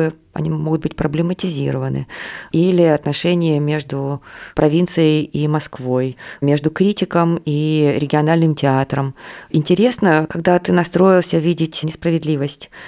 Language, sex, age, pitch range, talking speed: Russian, female, 20-39, 150-180 Hz, 100 wpm